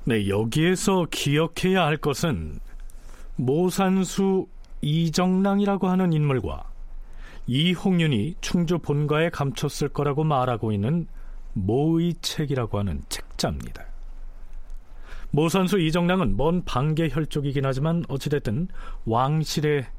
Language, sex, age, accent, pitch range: Korean, male, 40-59, native, 110-165 Hz